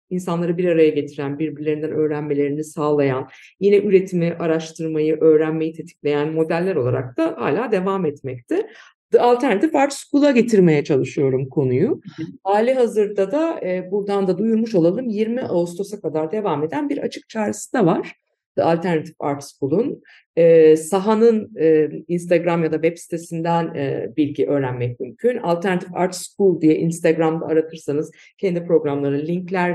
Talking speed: 135 wpm